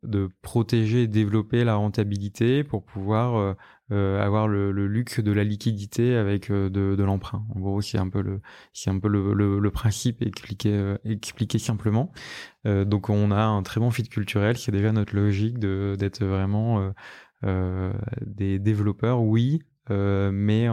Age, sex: 20-39, male